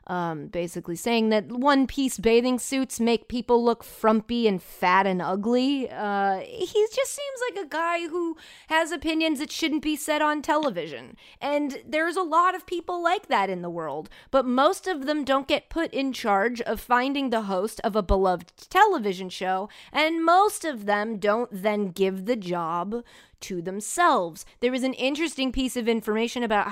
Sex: female